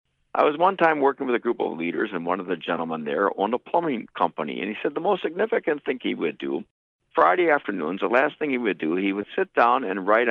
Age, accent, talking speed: 60-79, American, 255 wpm